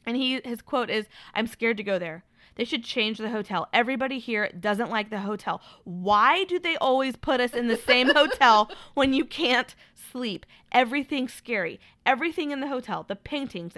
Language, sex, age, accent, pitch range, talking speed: English, female, 20-39, American, 200-260 Hz, 185 wpm